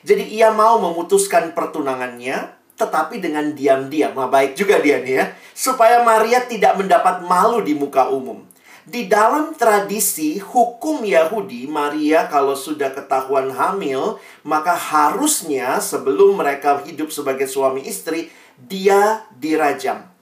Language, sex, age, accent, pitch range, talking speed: Indonesian, male, 40-59, native, 135-225 Hz, 125 wpm